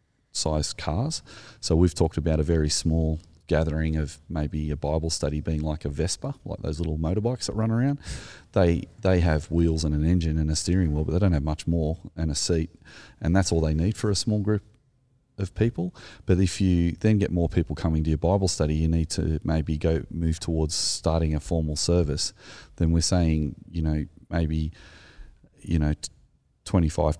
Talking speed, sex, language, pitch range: 195 wpm, male, English, 75-90 Hz